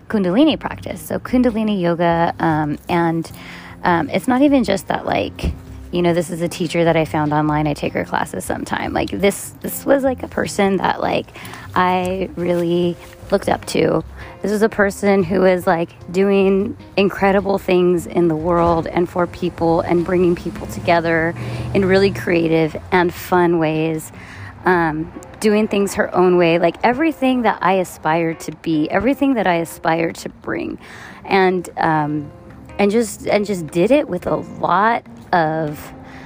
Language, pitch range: English, 165-200 Hz